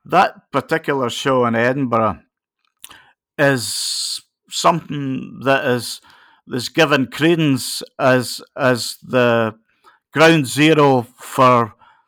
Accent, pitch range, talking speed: British, 130-165 Hz, 90 wpm